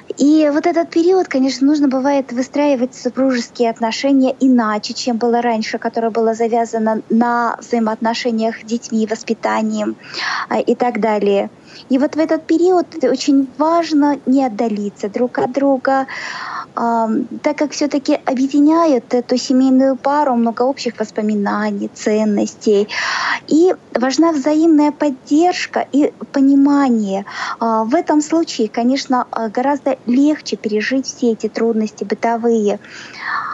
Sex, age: female, 20-39